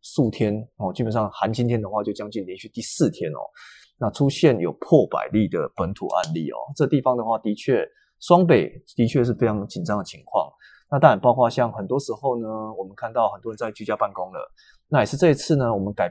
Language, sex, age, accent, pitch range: Chinese, male, 20-39, native, 110-150 Hz